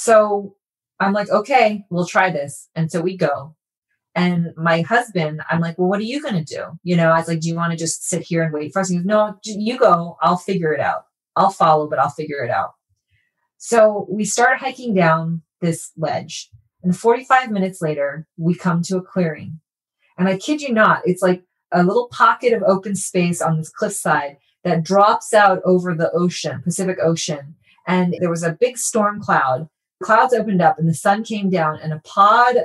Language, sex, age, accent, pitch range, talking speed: English, female, 30-49, American, 165-200 Hz, 210 wpm